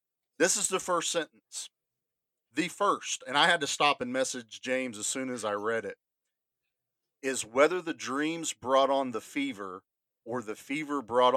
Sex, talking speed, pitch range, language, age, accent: male, 175 wpm, 115-155 Hz, English, 40-59, American